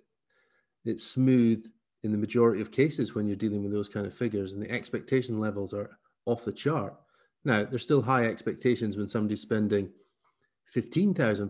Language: English